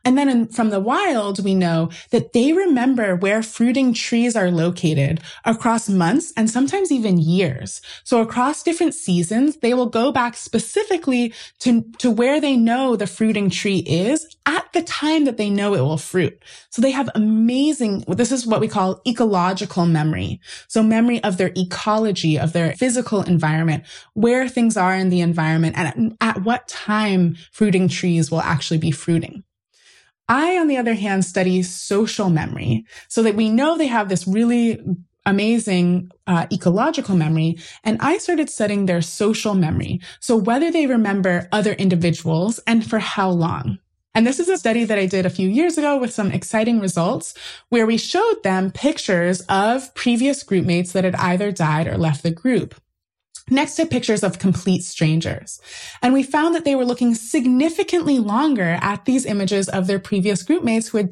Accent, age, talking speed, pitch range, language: American, 20-39, 175 wpm, 180-250 Hz, English